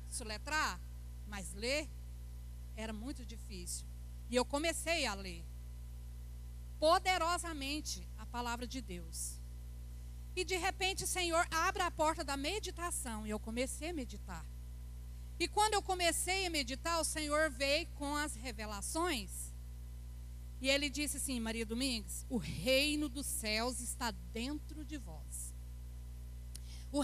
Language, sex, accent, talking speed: Portuguese, female, Brazilian, 130 wpm